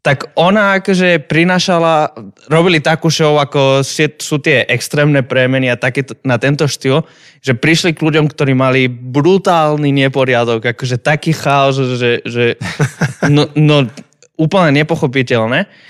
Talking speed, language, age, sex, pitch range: 130 wpm, Slovak, 20-39, male, 125-155 Hz